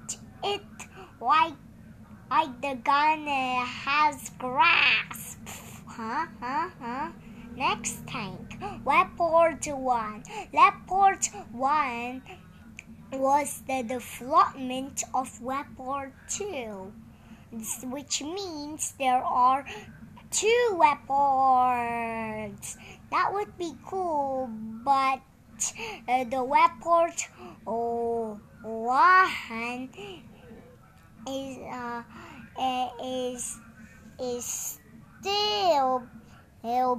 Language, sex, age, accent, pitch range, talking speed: Indonesian, male, 20-39, American, 235-310 Hz, 70 wpm